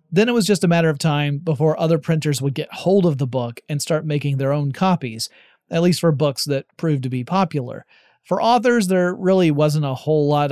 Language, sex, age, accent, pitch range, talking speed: English, male, 30-49, American, 135-170 Hz, 230 wpm